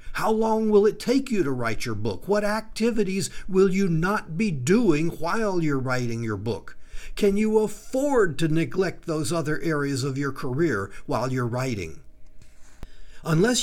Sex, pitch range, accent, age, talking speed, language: male, 140-200 Hz, American, 60-79, 165 wpm, English